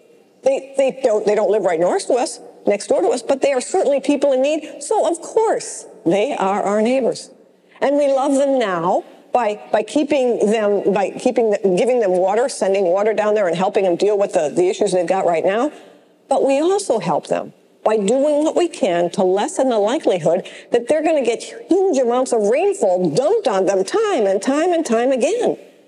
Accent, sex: American, female